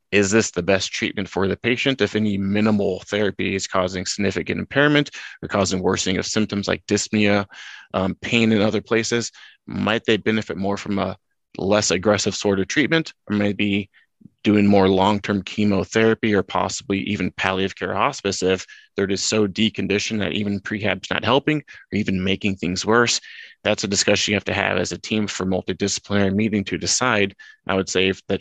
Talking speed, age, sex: 180 wpm, 20-39, male